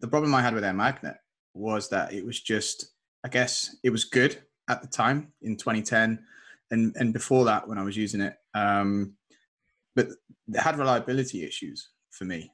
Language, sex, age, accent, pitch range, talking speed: English, male, 20-39, British, 105-120 Hz, 180 wpm